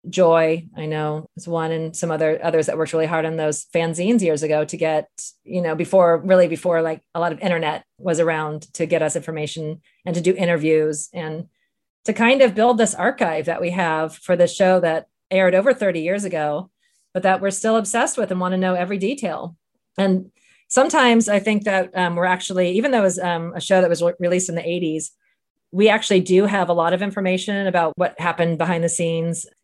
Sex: female